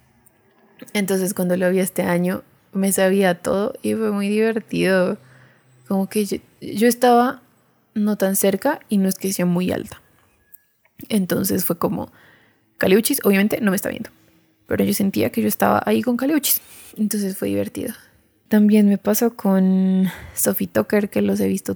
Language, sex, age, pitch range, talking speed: Spanish, female, 20-39, 180-210 Hz, 165 wpm